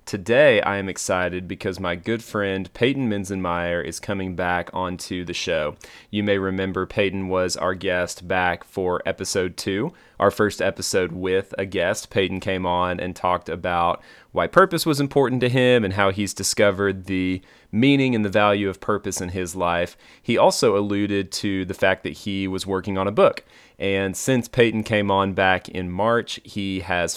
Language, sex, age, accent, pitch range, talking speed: English, male, 30-49, American, 95-105 Hz, 180 wpm